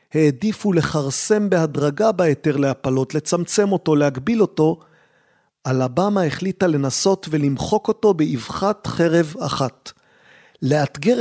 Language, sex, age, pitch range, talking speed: Hebrew, male, 40-59, 145-185 Hz, 95 wpm